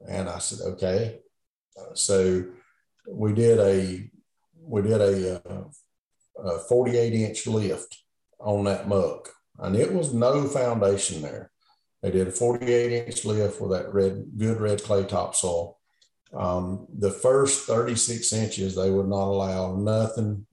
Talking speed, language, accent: 145 wpm, English, American